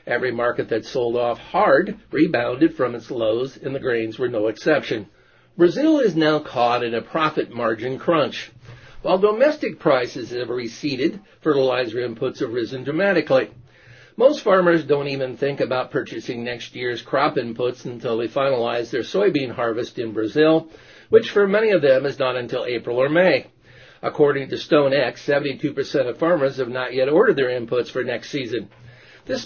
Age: 50-69